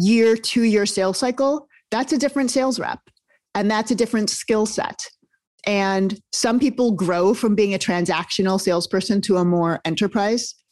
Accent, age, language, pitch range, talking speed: American, 30-49, English, 190-225 Hz, 160 wpm